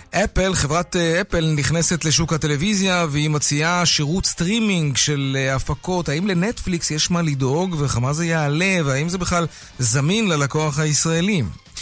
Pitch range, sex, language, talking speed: 130-180 Hz, male, Hebrew, 130 wpm